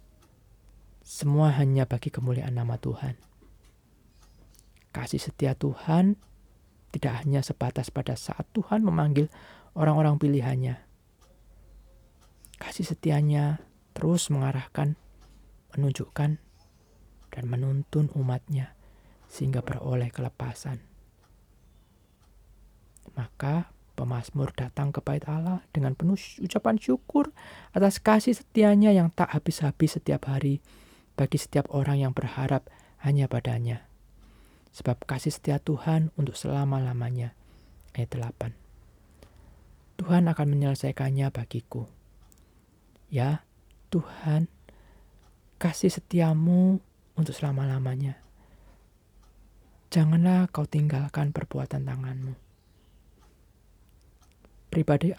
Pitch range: 110-150 Hz